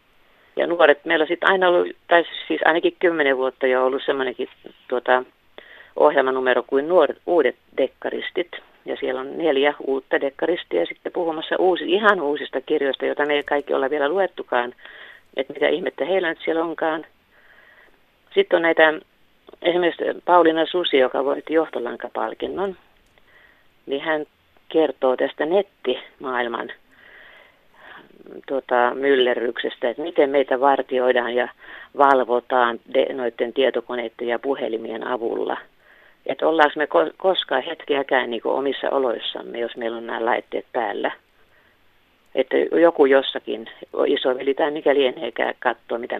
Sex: female